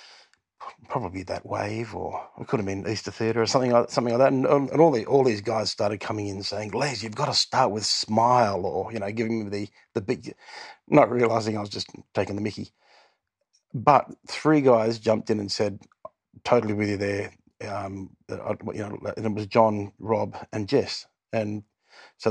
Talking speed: 200 wpm